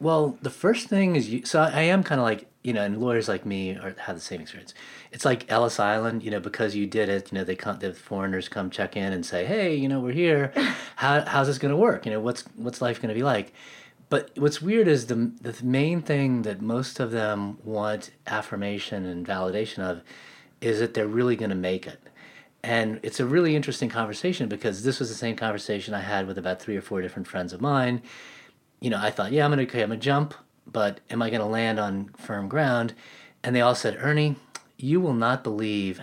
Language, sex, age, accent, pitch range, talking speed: English, male, 30-49, American, 105-140 Hz, 235 wpm